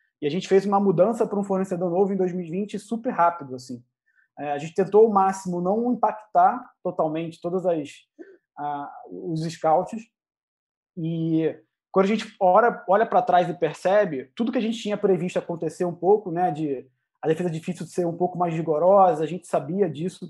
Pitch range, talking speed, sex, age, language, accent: 160-200 Hz, 180 wpm, male, 20-39, Portuguese, Brazilian